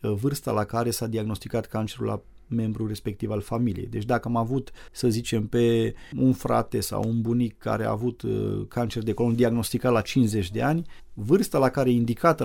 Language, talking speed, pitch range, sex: Romanian, 190 wpm, 110-130 Hz, male